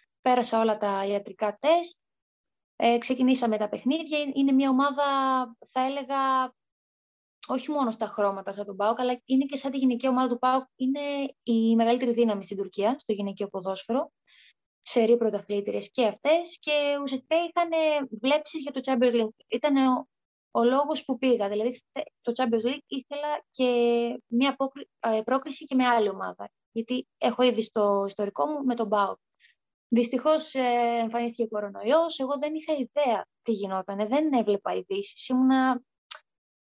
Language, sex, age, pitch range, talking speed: Greek, female, 20-39, 225-280 Hz, 150 wpm